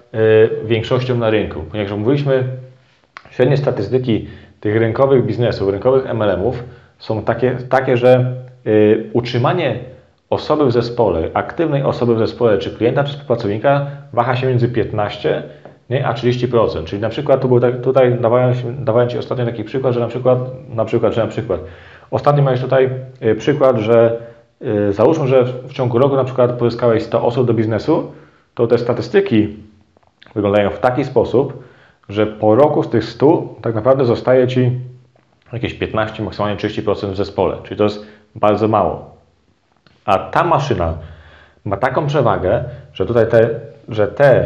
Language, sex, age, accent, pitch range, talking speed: Polish, male, 30-49, native, 110-130 Hz, 155 wpm